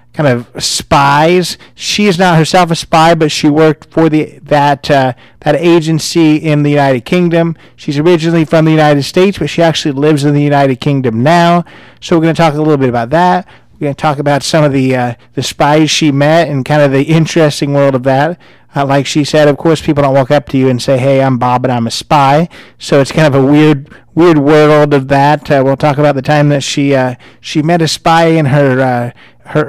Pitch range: 135-160 Hz